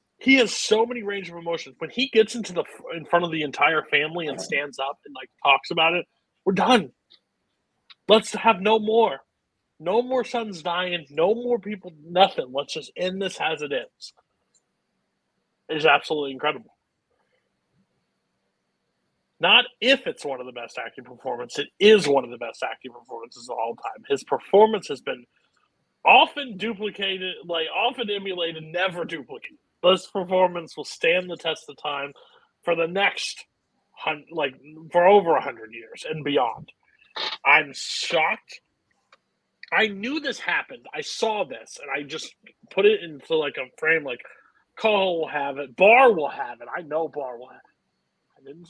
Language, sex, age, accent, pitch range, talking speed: English, male, 40-59, American, 155-235 Hz, 165 wpm